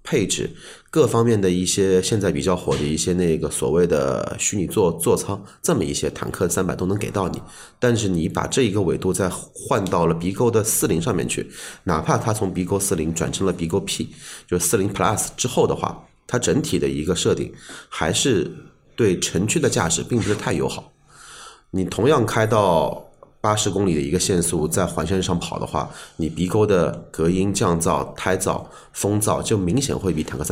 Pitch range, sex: 85-105 Hz, male